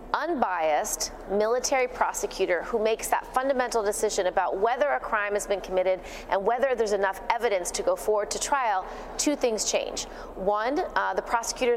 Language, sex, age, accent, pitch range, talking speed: English, female, 30-49, American, 195-245 Hz, 165 wpm